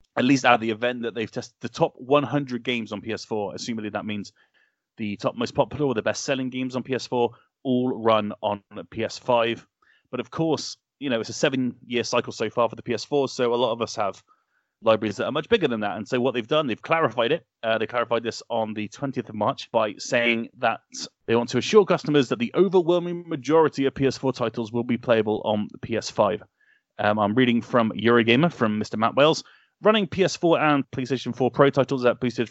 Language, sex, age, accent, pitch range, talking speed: English, male, 30-49, British, 110-140 Hz, 210 wpm